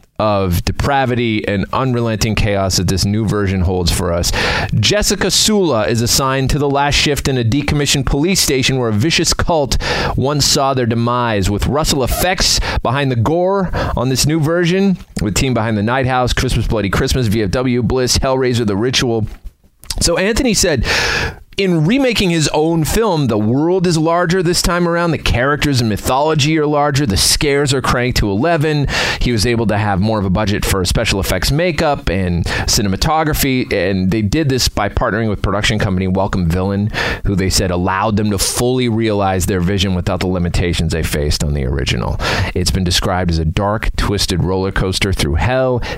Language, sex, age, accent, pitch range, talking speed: English, male, 30-49, American, 95-140 Hz, 180 wpm